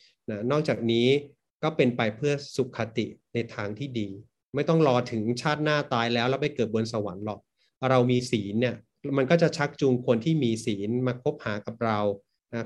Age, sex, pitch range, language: 30-49, male, 115-145 Hz, Thai